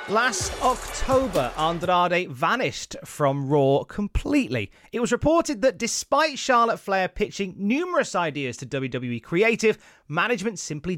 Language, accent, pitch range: English, British, 135-220 Hz